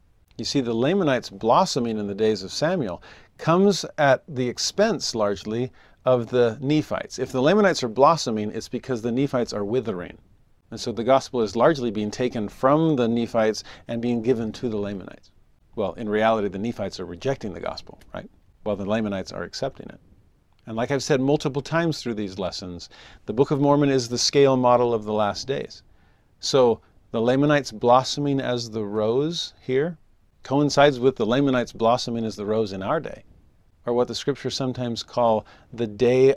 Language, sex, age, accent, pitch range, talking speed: English, male, 50-69, American, 105-135 Hz, 180 wpm